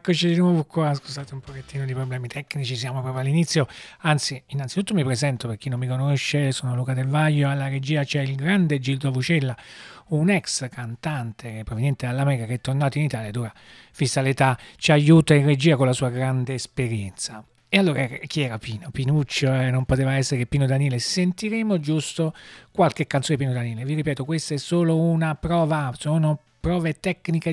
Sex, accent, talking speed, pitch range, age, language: male, native, 185 wpm, 130-160 Hz, 40-59, Italian